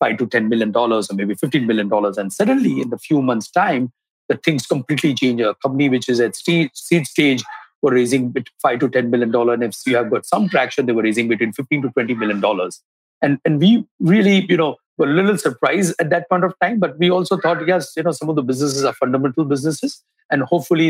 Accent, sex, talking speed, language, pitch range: Indian, male, 240 wpm, English, 125-165 Hz